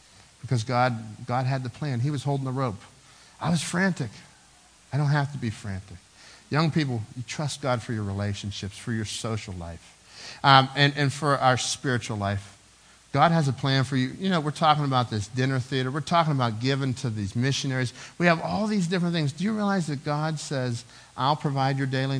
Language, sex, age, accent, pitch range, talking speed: English, male, 50-69, American, 115-155 Hz, 205 wpm